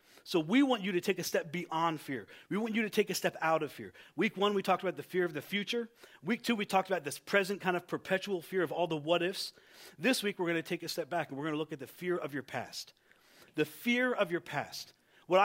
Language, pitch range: English, 165-220 Hz